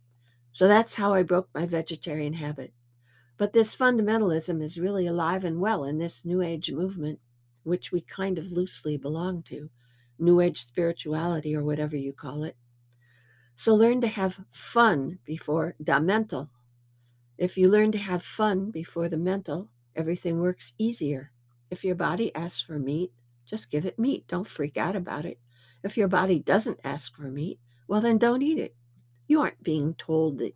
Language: English